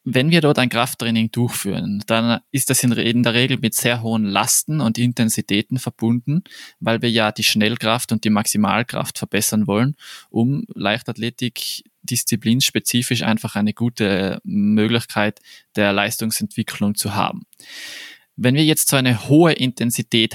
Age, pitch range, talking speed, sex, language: 20-39, 110-130 Hz, 140 wpm, male, German